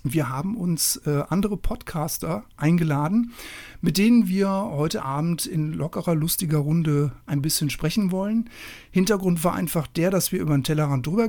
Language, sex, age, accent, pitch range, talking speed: German, male, 60-79, German, 150-195 Hz, 155 wpm